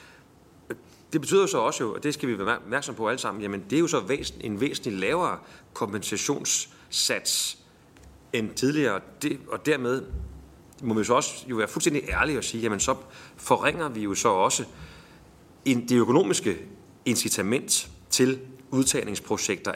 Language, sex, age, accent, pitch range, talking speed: Danish, male, 30-49, native, 95-125 Hz, 150 wpm